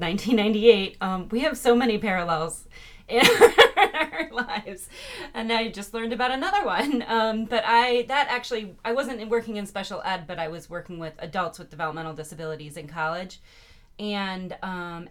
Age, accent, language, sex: 30-49, American, English, female